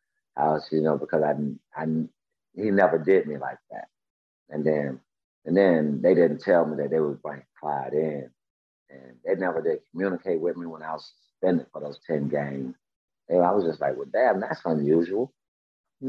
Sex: male